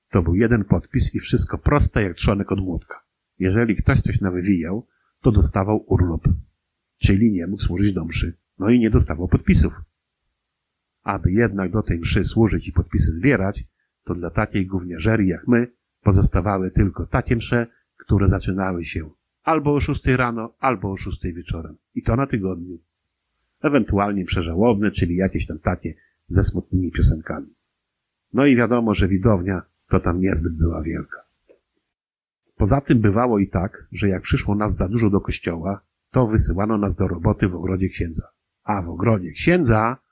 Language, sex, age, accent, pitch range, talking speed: Polish, male, 50-69, native, 90-110 Hz, 160 wpm